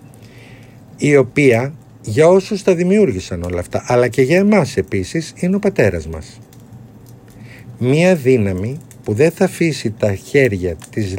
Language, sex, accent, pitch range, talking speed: Greek, male, native, 100-130 Hz, 140 wpm